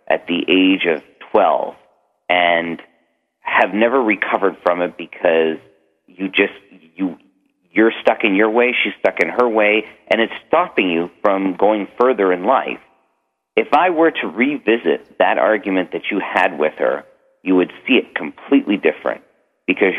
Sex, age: male, 40-59